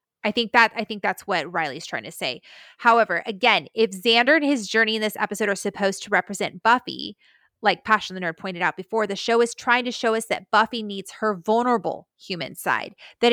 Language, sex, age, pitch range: English, female, 20-39, 190-235 Hz